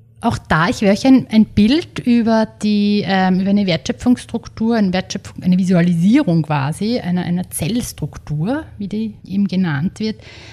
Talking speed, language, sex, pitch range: 140 wpm, German, female, 165-215 Hz